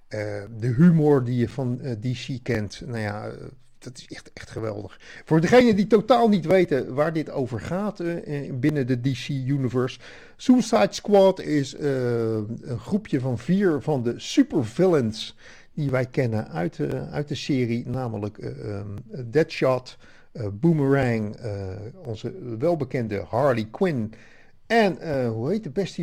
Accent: Dutch